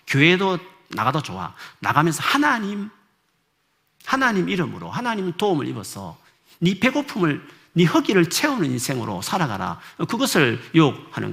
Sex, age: male, 50-69